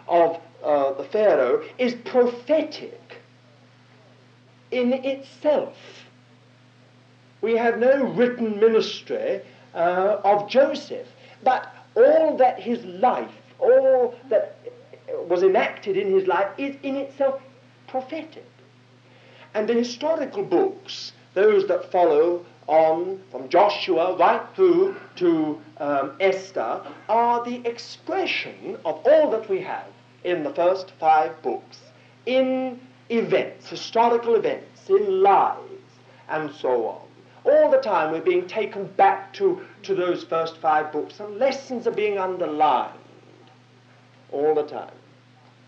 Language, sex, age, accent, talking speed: English, male, 60-79, British, 120 wpm